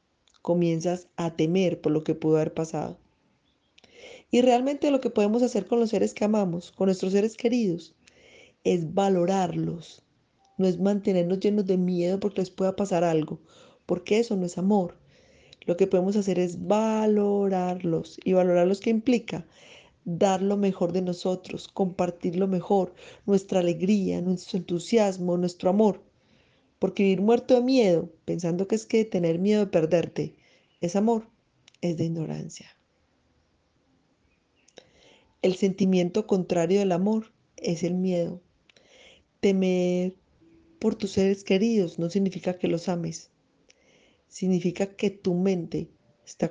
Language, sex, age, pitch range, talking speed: Spanish, female, 30-49, 175-205 Hz, 140 wpm